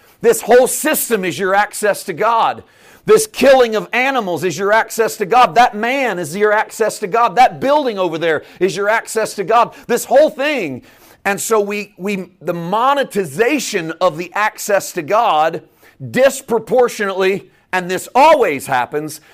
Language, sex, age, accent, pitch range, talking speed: English, male, 40-59, American, 170-245 Hz, 160 wpm